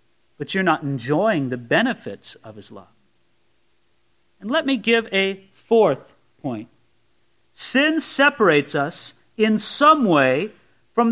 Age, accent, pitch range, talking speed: 40-59, American, 145-210 Hz, 125 wpm